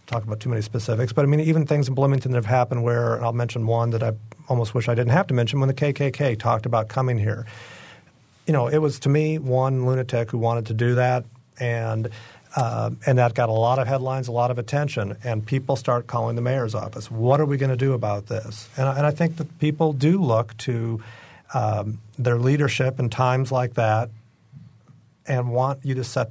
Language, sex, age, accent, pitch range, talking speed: English, male, 50-69, American, 115-130 Hz, 225 wpm